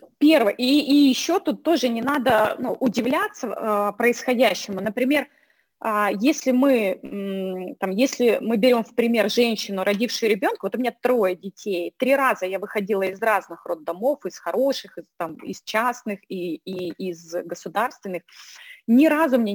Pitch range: 185-255 Hz